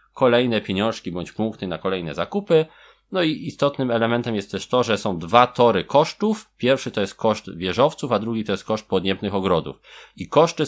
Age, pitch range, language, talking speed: 20-39, 100-135 Hz, Polish, 185 wpm